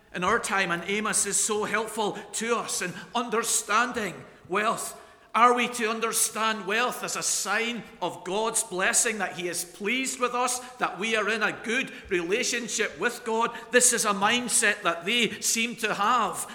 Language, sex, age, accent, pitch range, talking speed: English, male, 50-69, British, 170-225 Hz, 175 wpm